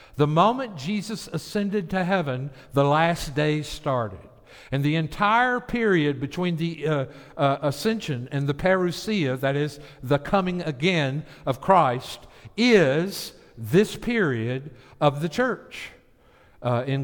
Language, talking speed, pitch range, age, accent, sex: English, 130 wpm, 120-175 Hz, 60-79, American, male